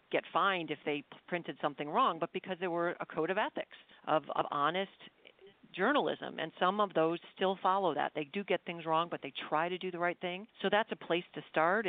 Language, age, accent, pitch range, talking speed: English, 40-59, American, 160-200 Hz, 225 wpm